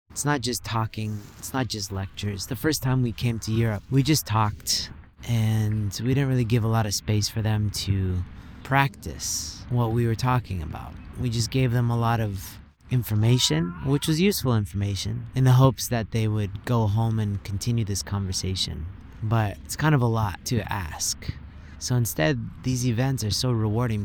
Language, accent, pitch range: English, American, 100-120 Hz